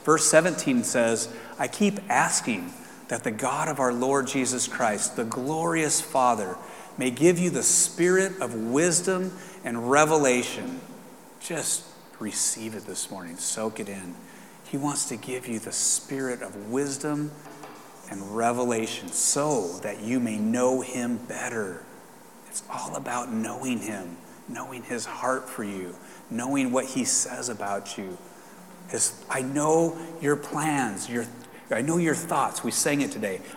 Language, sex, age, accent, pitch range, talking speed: English, male, 30-49, American, 120-160 Hz, 145 wpm